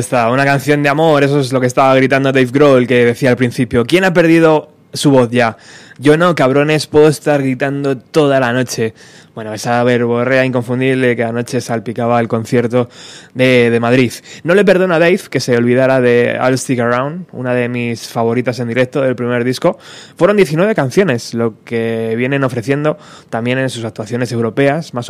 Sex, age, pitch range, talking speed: male, 20-39, 115-140 Hz, 185 wpm